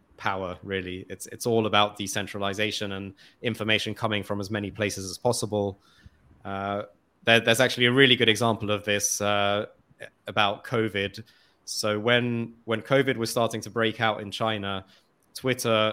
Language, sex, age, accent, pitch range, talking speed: English, male, 20-39, British, 105-115 Hz, 150 wpm